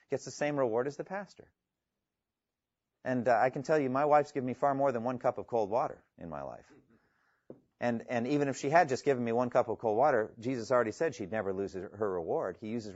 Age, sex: 40-59, male